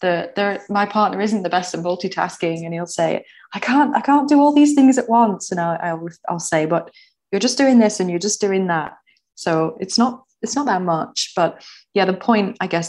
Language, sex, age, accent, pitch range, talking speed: English, female, 20-39, British, 165-205 Hz, 220 wpm